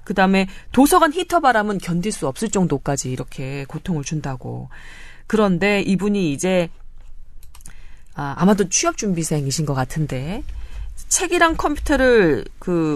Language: Korean